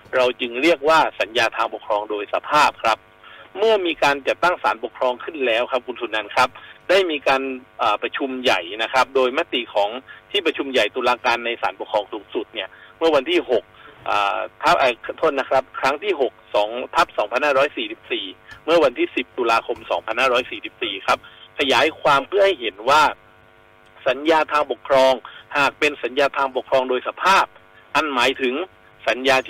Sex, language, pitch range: male, Thai, 125-180 Hz